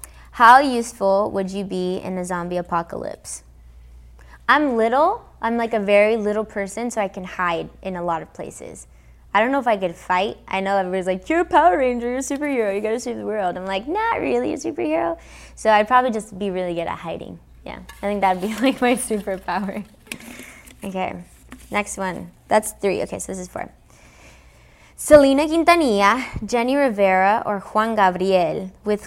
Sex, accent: female, American